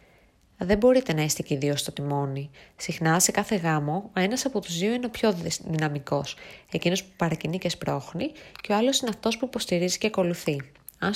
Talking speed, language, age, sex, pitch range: 200 wpm, Greek, 20-39, female, 165-220 Hz